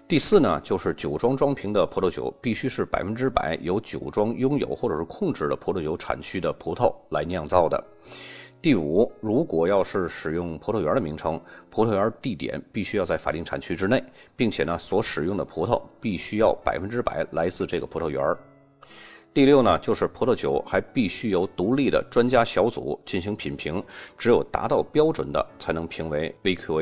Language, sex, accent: Chinese, male, native